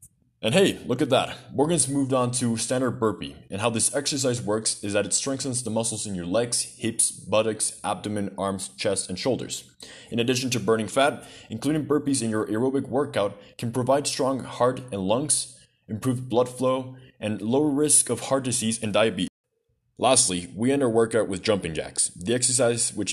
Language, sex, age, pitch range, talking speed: English, male, 20-39, 105-130 Hz, 185 wpm